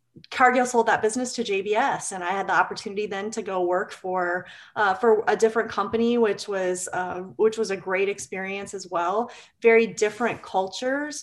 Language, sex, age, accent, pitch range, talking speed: English, female, 30-49, American, 180-225 Hz, 180 wpm